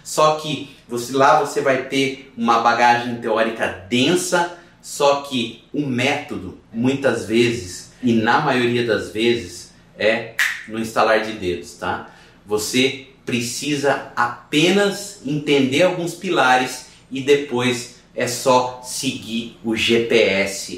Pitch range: 120-155 Hz